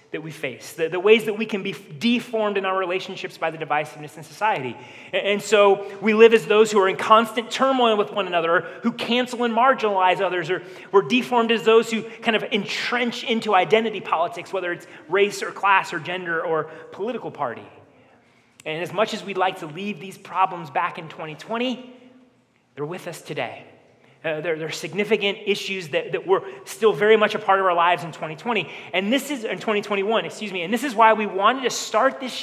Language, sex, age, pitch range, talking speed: English, male, 30-49, 170-220 Hz, 205 wpm